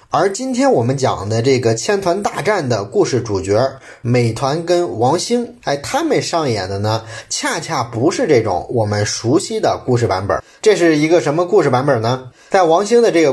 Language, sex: Chinese, male